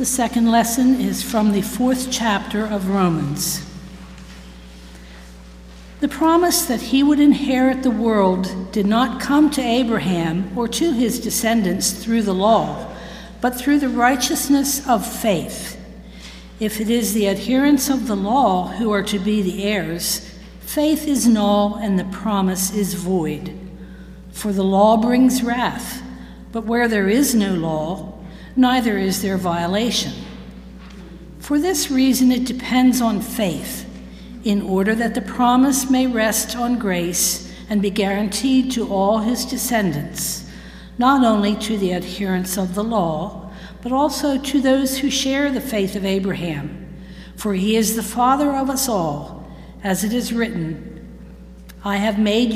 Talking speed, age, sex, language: 145 wpm, 60-79, female, English